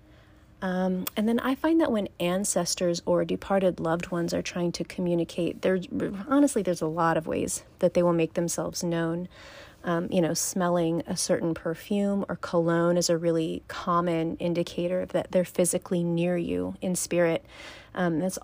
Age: 30-49